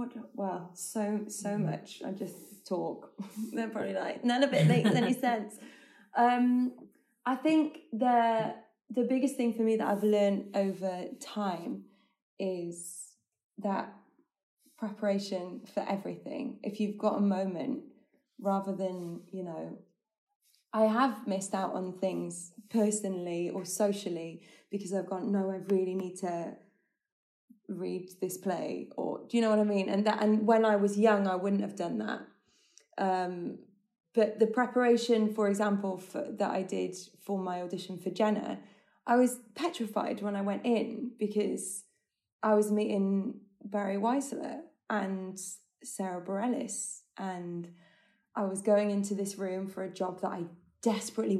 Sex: female